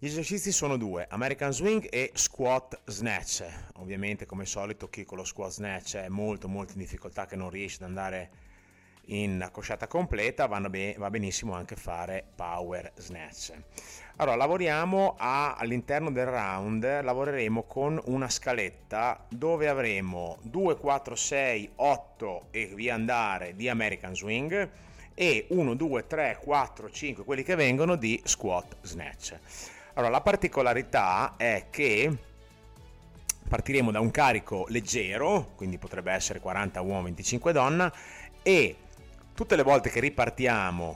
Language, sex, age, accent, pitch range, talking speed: Italian, male, 30-49, native, 95-130 Hz, 140 wpm